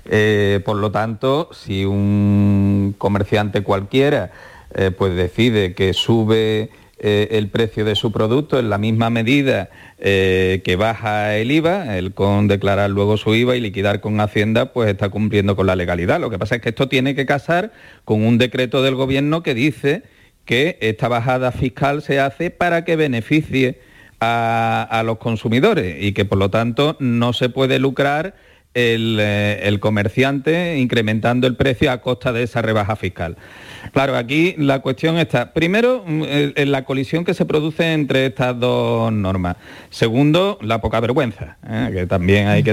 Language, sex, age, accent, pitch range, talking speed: Spanish, male, 40-59, Spanish, 105-135 Hz, 165 wpm